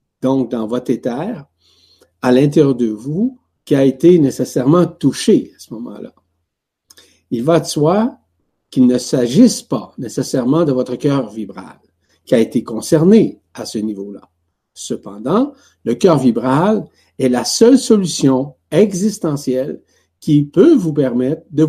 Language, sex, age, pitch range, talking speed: French, male, 60-79, 115-175 Hz, 140 wpm